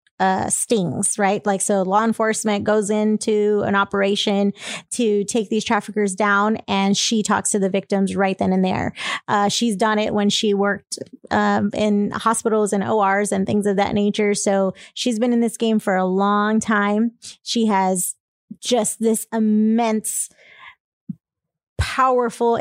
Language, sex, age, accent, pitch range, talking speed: English, female, 30-49, American, 200-220 Hz, 155 wpm